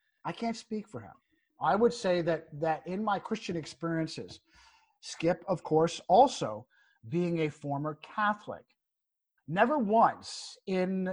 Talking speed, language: 135 wpm, English